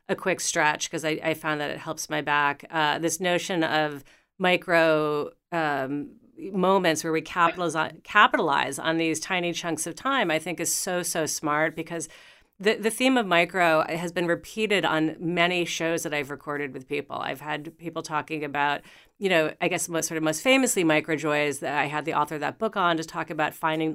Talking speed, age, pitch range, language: 205 wpm, 40-59, 155-175 Hz, English